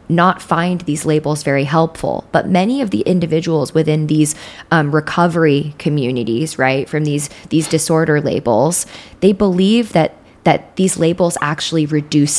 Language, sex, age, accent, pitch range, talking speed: English, female, 20-39, American, 150-175 Hz, 145 wpm